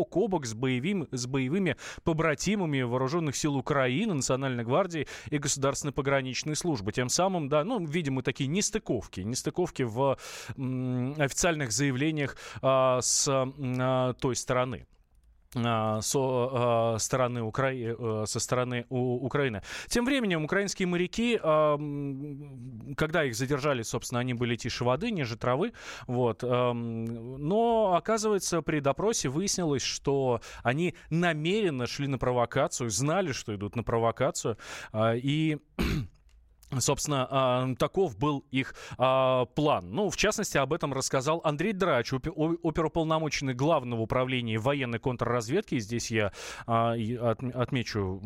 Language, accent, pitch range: Russian, native, 120-150 Hz